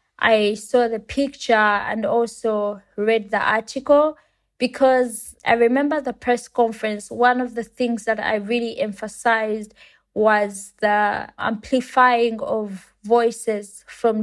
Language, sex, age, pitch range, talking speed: English, female, 20-39, 210-245 Hz, 120 wpm